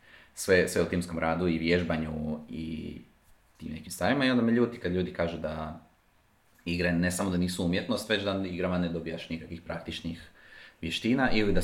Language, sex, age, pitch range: Croatian, male, 30-49, 80-90 Hz